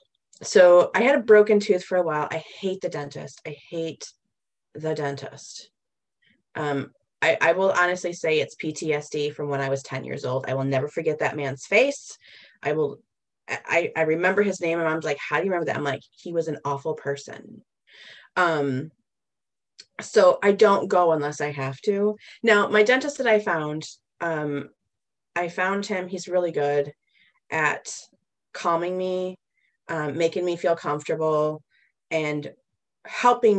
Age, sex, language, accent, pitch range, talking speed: 30-49, female, English, American, 150-195 Hz, 170 wpm